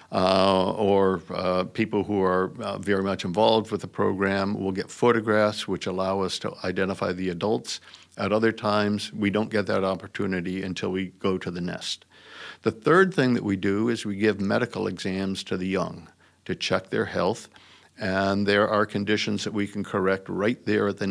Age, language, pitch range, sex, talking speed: 50-69, English, 95-105 Hz, male, 190 wpm